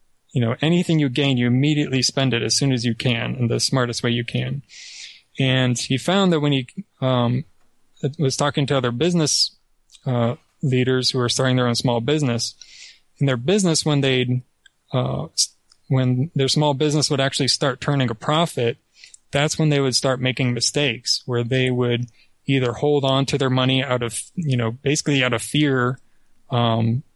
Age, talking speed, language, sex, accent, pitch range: 20-39, 180 wpm, English, male, American, 120-145 Hz